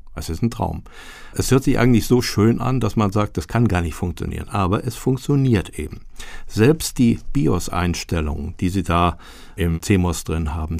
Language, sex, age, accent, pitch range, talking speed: German, male, 60-79, German, 85-110 Hz, 185 wpm